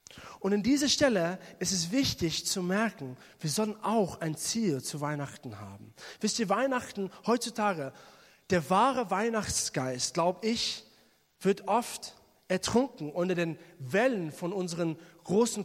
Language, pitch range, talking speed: German, 160-220 Hz, 135 wpm